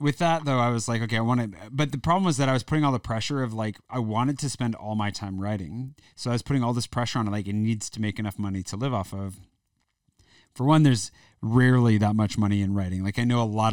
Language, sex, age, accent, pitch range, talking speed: English, male, 30-49, American, 100-125 Hz, 285 wpm